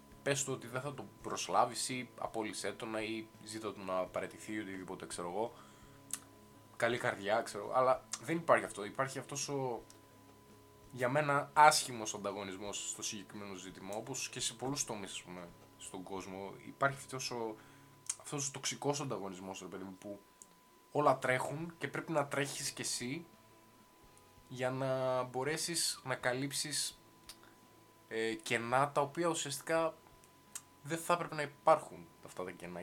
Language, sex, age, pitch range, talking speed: Greek, male, 20-39, 110-145 Hz, 145 wpm